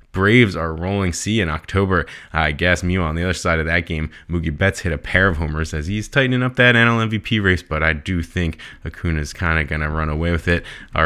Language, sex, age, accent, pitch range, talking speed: English, male, 20-39, American, 85-100 Hz, 250 wpm